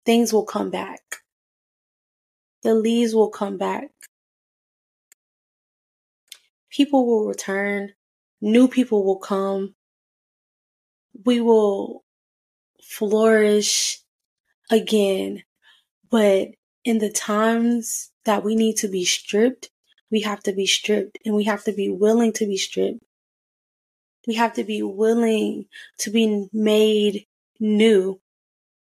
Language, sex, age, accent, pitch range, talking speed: English, female, 20-39, American, 205-230 Hz, 110 wpm